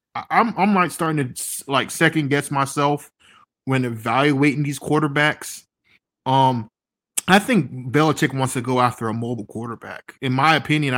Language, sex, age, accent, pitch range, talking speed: English, male, 20-39, American, 125-150 Hz, 150 wpm